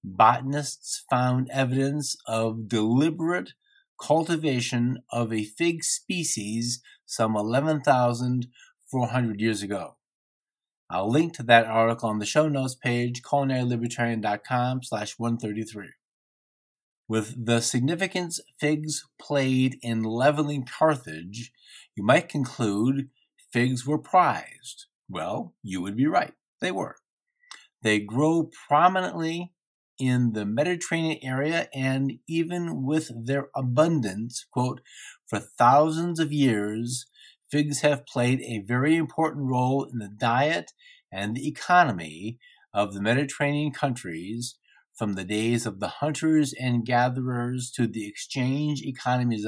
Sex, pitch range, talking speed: male, 115-150 Hz, 110 wpm